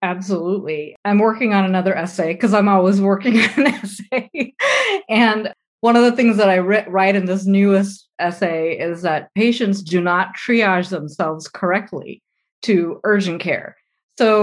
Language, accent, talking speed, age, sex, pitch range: English, American, 155 wpm, 30-49, female, 180-225 Hz